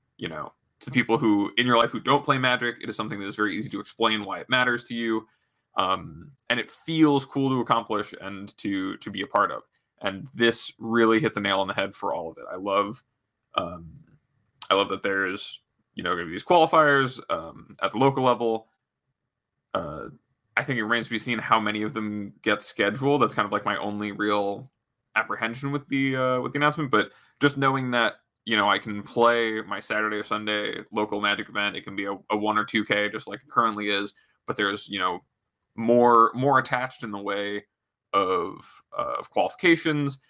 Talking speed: 210 wpm